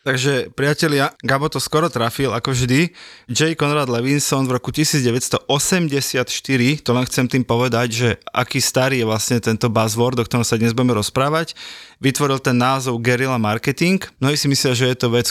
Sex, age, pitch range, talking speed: male, 20-39, 120-145 Hz, 175 wpm